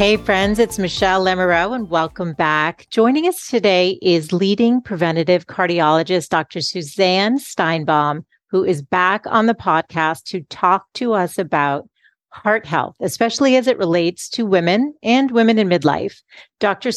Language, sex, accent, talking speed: English, female, American, 150 wpm